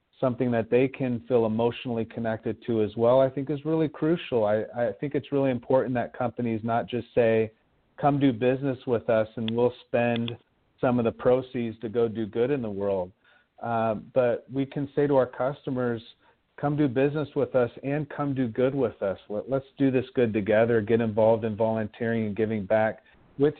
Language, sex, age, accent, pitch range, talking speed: English, male, 40-59, American, 115-130 Hz, 195 wpm